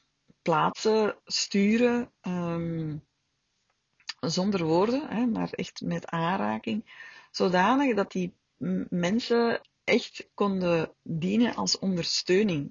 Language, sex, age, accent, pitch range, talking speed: Dutch, female, 40-59, Dutch, 165-210 Hz, 80 wpm